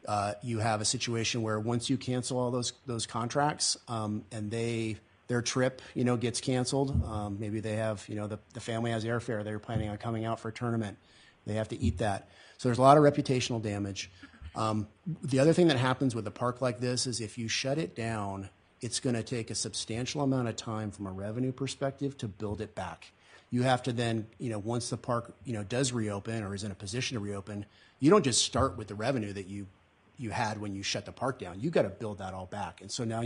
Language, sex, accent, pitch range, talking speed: English, male, American, 105-120 Hz, 240 wpm